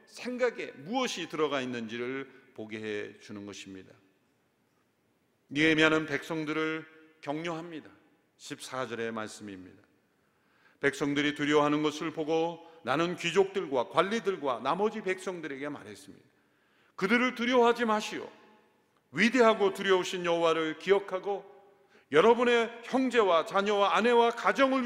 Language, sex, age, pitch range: Korean, male, 40-59, 170-230 Hz